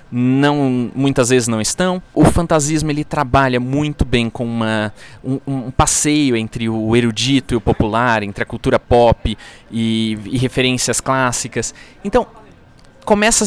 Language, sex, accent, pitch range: Portuguese, male, Brazilian, 120-180 Hz